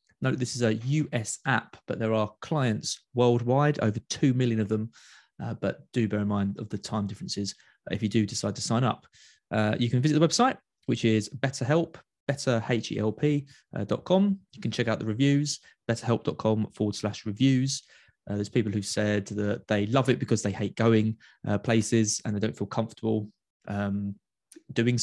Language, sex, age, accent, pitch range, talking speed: English, male, 20-39, British, 105-135 Hz, 185 wpm